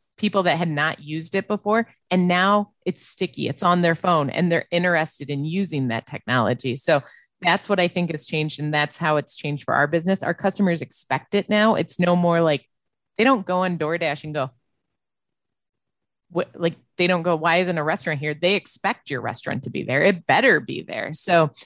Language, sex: English, female